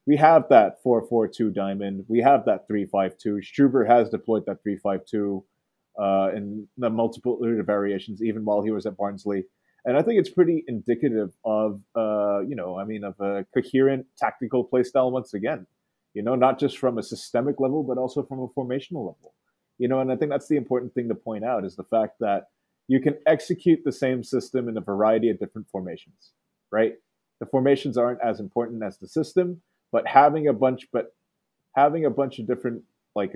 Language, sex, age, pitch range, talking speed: English, male, 30-49, 105-130 Hz, 190 wpm